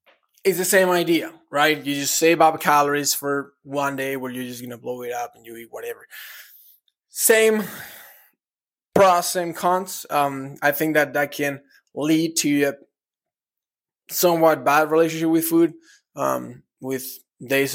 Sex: male